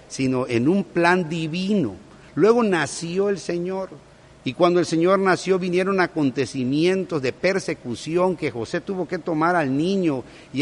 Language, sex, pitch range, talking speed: Spanish, male, 125-165 Hz, 145 wpm